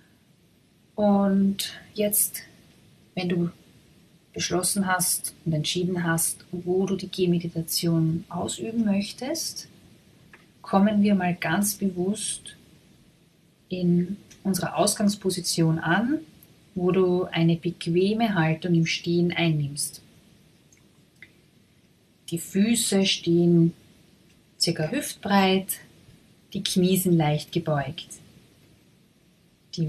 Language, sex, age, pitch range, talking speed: German, female, 30-49, 165-200 Hz, 85 wpm